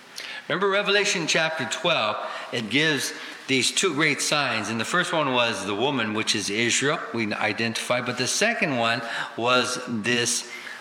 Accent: American